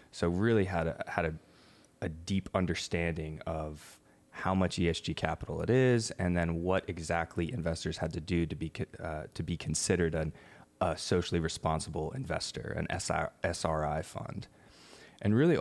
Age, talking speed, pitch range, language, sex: 20-39, 160 wpm, 80-95 Hz, English, male